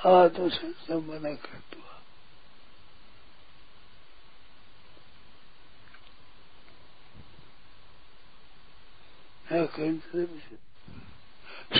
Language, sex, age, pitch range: Hindi, male, 60-79, 165-205 Hz